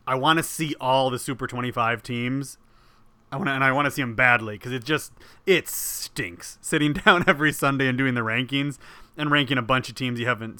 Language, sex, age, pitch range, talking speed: English, male, 30-49, 120-150 Hz, 225 wpm